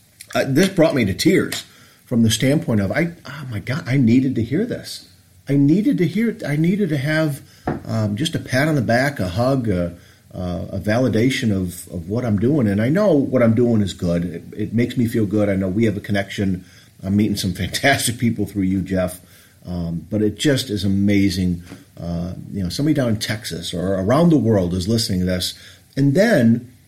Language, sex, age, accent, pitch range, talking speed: English, male, 40-59, American, 95-130 Hz, 215 wpm